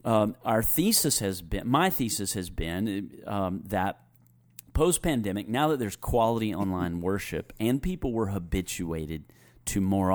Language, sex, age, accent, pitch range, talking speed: English, male, 40-59, American, 90-125 Hz, 155 wpm